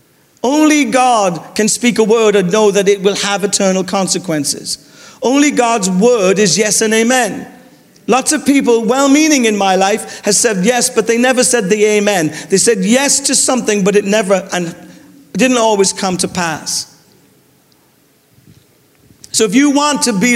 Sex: male